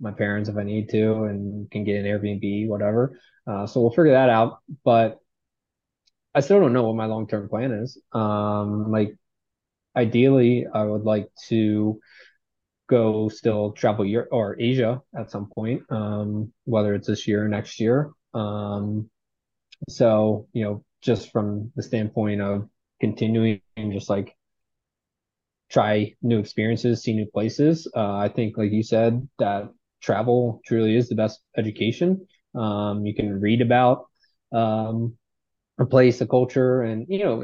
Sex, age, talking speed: male, 20-39, 155 wpm